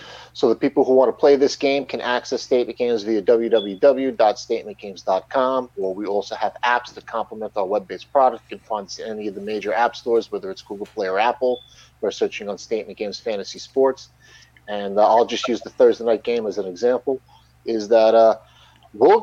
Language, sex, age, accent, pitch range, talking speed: English, male, 40-59, American, 105-135 Hz, 195 wpm